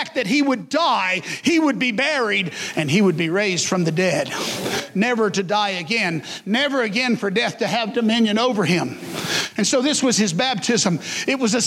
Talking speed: 195 wpm